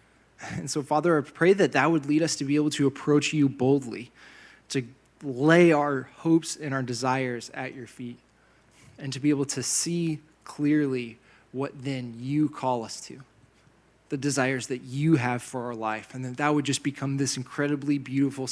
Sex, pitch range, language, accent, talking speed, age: male, 120-145 Hz, English, American, 185 wpm, 20-39